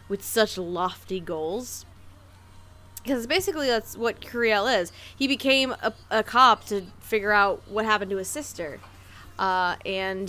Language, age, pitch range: English, 20-39, 185-240 Hz